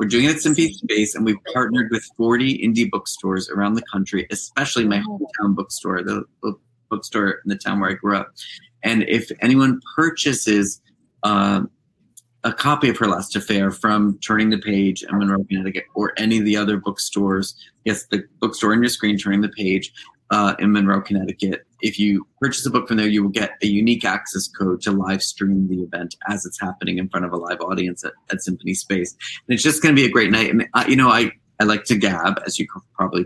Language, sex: English, male